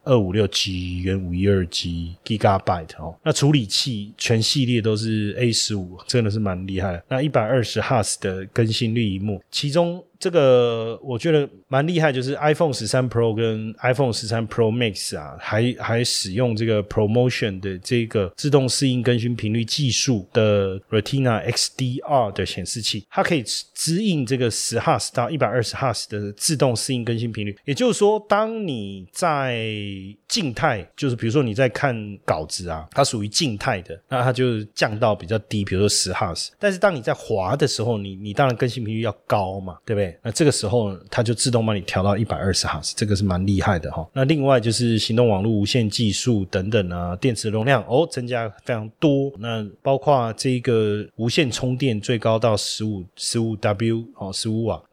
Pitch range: 105-135 Hz